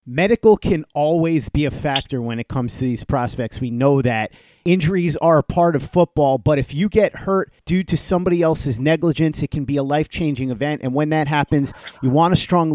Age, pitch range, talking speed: 30-49, 135-165 Hz, 210 wpm